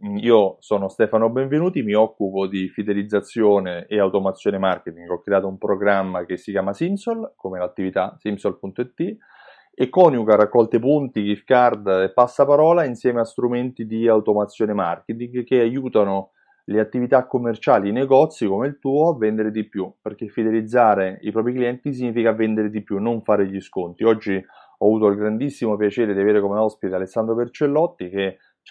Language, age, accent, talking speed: Italian, 30-49, native, 160 wpm